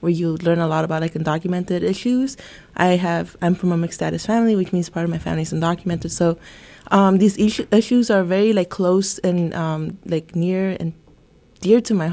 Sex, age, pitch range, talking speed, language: female, 20-39, 170-195 Hz, 210 wpm, English